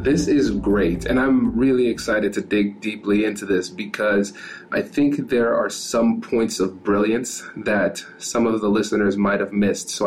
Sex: male